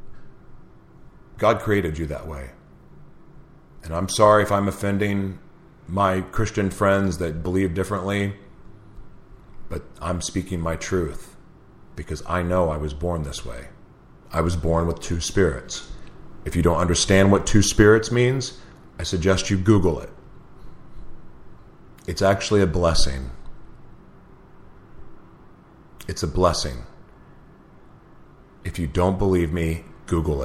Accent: American